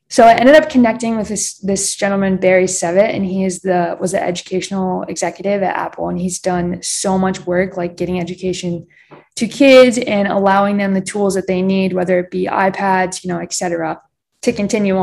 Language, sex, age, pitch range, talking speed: English, female, 20-39, 180-215 Hz, 200 wpm